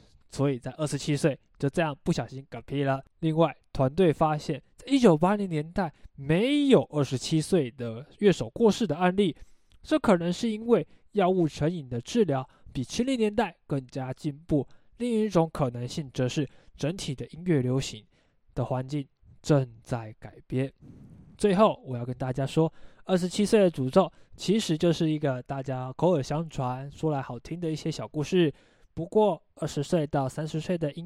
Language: Chinese